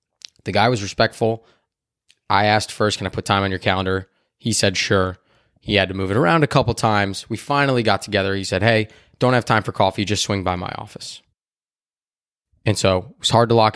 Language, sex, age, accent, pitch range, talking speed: English, male, 20-39, American, 100-120 Hz, 220 wpm